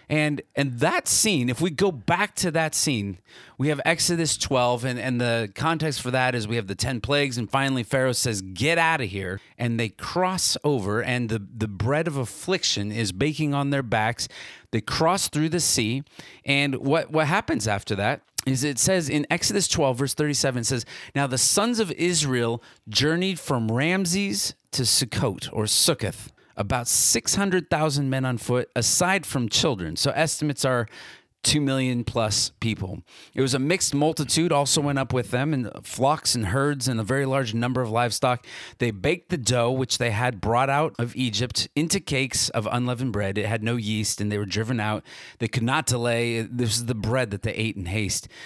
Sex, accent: male, American